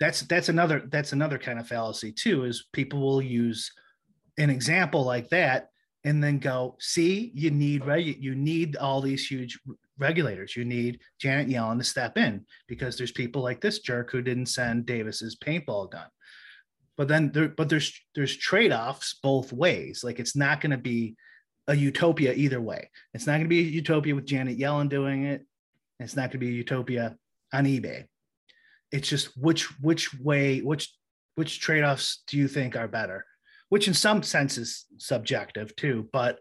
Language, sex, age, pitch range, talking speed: English, male, 30-49, 120-150 Hz, 185 wpm